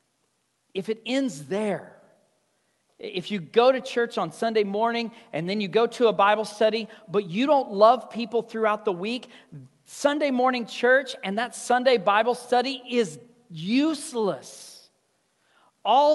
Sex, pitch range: male, 170-245 Hz